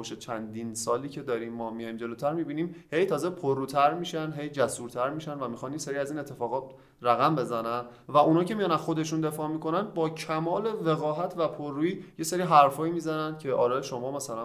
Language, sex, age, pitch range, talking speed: Persian, male, 30-49, 135-175 Hz, 185 wpm